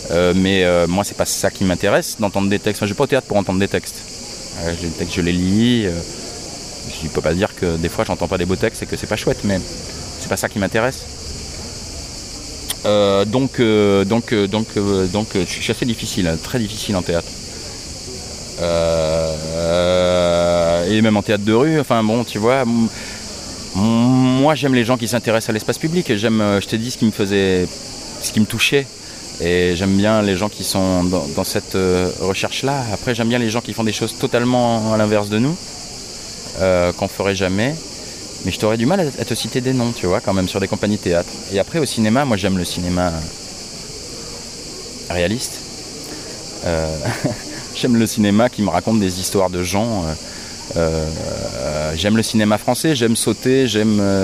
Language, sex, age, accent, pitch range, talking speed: French, male, 30-49, French, 90-115 Hz, 205 wpm